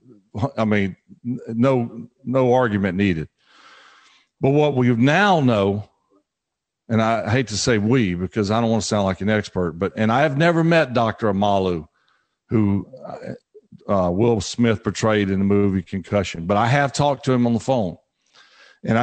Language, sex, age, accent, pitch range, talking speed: English, male, 50-69, American, 100-130 Hz, 165 wpm